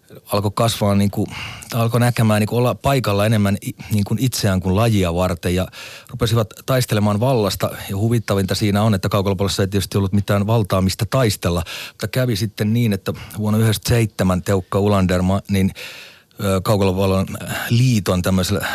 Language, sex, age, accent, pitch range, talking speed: Finnish, male, 30-49, native, 95-110 Hz, 155 wpm